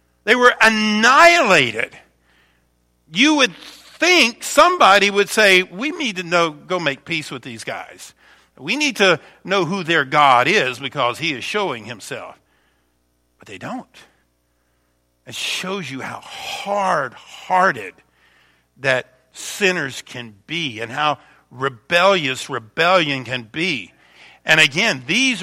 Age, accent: 50-69, American